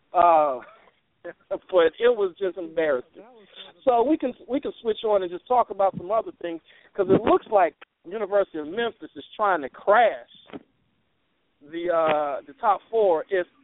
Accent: American